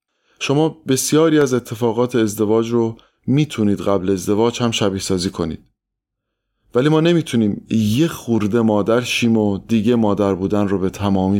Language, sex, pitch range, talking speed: Persian, male, 100-125 Hz, 140 wpm